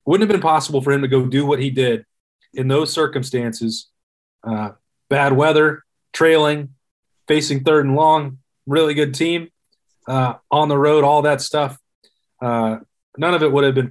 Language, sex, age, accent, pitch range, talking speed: English, male, 30-49, American, 125-150 Hz, 175 wpm